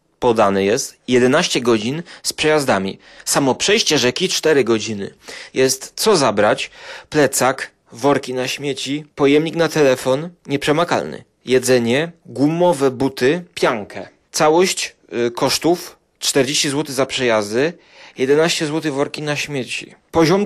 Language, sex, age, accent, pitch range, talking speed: Polish, male, 30-49, native, 125-160 Hz, 110 wpm